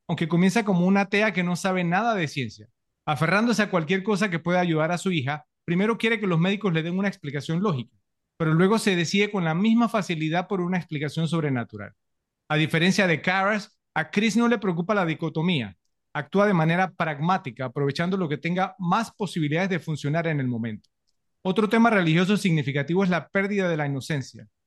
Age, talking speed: 30-49, 190 wpm